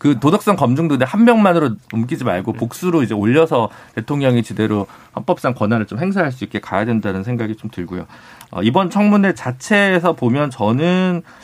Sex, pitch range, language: male, 115-175 Hz, Korean